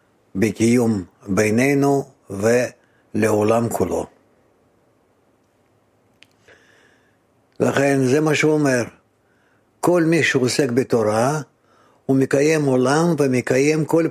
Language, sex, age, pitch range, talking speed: Hebrew, male, 60-79, 115-145 Hz, 75 wpm